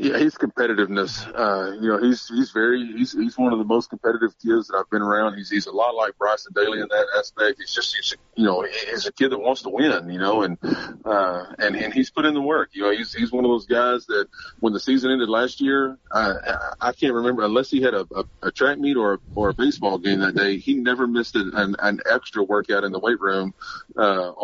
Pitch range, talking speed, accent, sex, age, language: 100-120 Hz, 250 wpm, American, male, 30-49, English